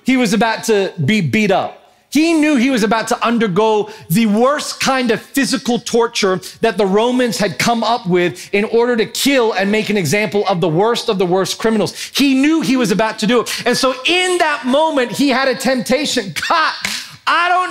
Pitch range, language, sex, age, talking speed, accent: 235-320 Hz, English, male, 40-59, 210 wpm, American